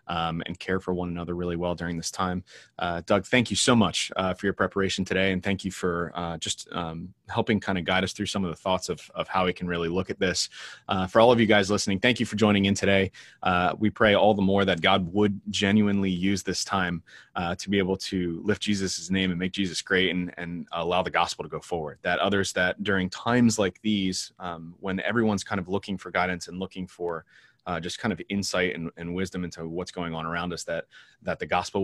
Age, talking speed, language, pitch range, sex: 20-39, 245 wpm, English, 90-100 Hz, male